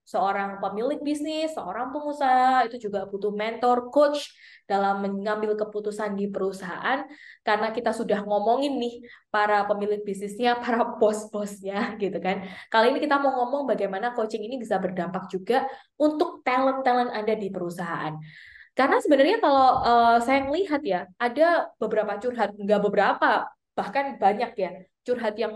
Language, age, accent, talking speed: Indonesian, 20-39, native, 140 wpm